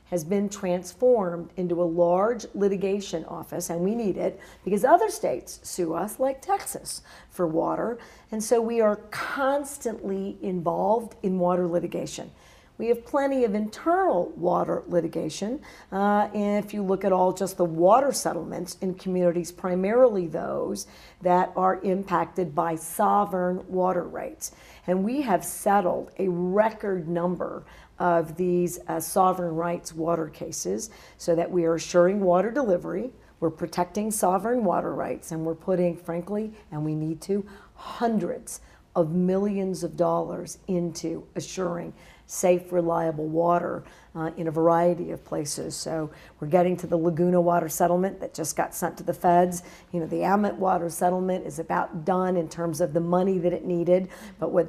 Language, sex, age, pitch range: English, female, 50-69, 170-200 Hz